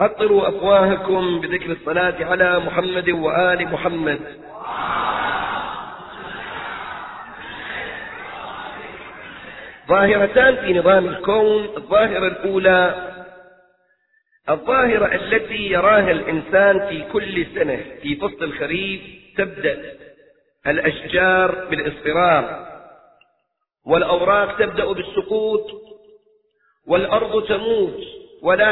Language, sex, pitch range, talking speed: Arabic, male, 180-295 Hz, 70 wpm